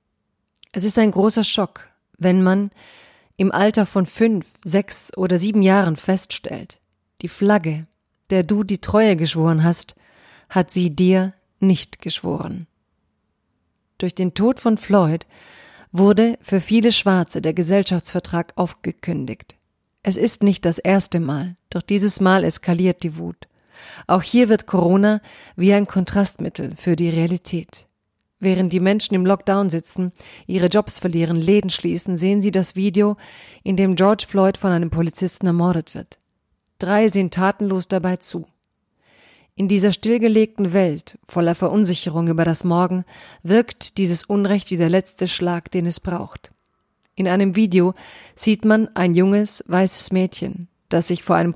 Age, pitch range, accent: 40-59, 175-200 Hz, German